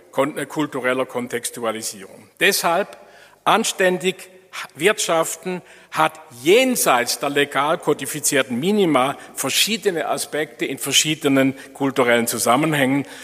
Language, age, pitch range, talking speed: German, 50-69, 120-165 Hz, 75 wpm